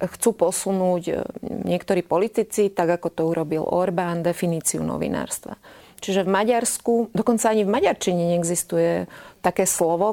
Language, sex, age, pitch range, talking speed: Slovak, female, 30-49, 165-200 Hz, 125 wpm